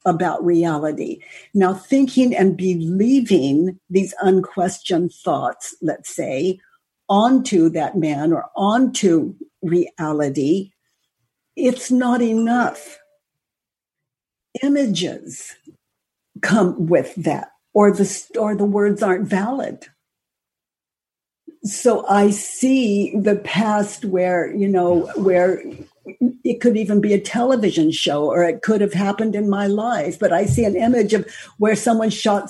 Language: English